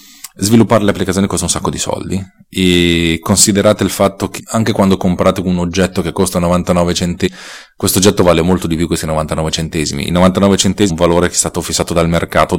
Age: 30-49